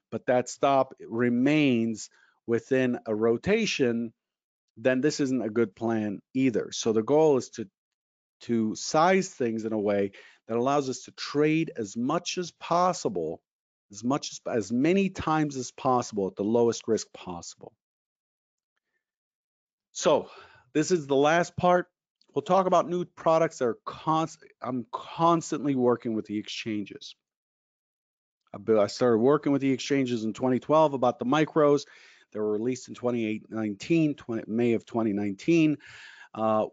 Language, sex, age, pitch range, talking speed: English, male, 50-69, 115-155 Hz, 140 wpm